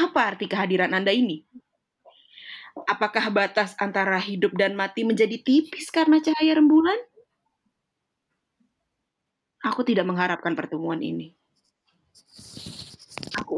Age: 20-39